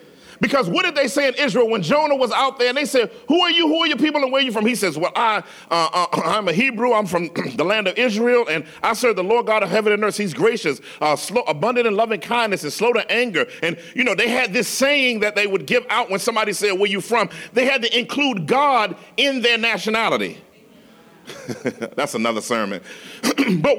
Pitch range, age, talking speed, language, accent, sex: 175-245 Hz, 40-59, 240 wpm, English, American, male